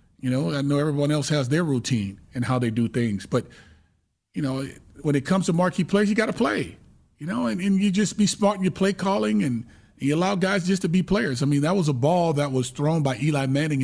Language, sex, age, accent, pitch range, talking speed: English, male, 30-49, American, 125-175 Hz, 255 wpm